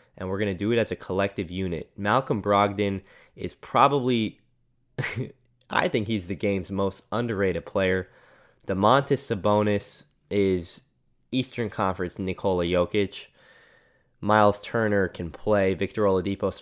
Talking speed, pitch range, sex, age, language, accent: 125 wpm, 95-125 Hz, male, 10-29, English, American